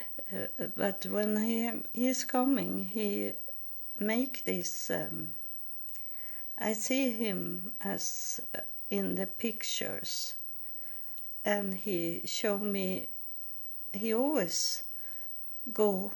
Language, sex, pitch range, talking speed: English, female, 175-215 Hz, 90 wpm